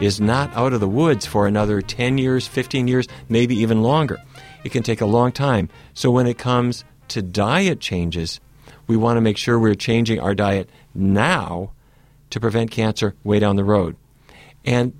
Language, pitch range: English, 105-135 Hz